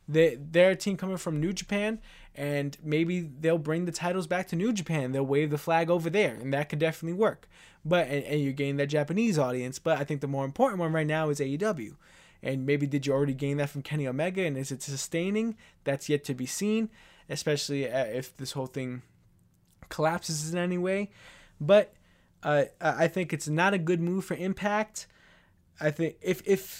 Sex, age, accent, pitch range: male, 20-39, American, 140-180 Hz